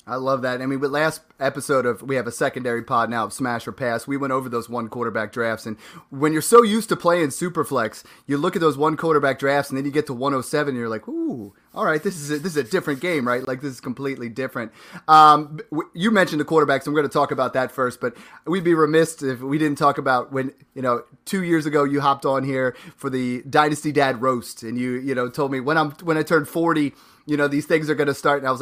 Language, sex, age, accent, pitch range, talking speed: English, male, 30-49, American, 125-165 Hz, 265 wpm